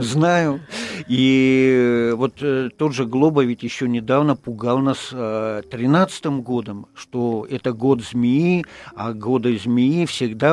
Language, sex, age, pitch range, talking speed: Russian, male, 50-69, 115-140 Hz, 120 wpm